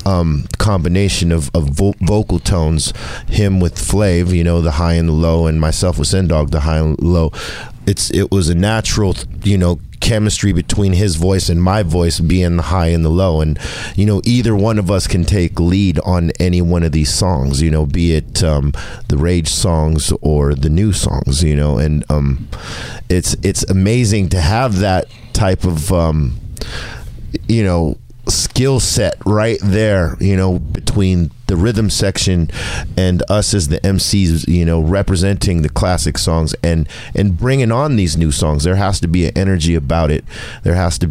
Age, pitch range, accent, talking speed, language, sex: 40-59, 80-100 Hz, American, 185 wpm, English, male